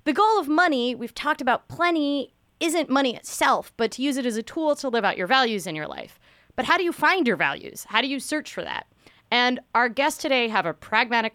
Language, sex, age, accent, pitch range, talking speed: English, female, 30-49, American, 175-245 Hz, 245 wpm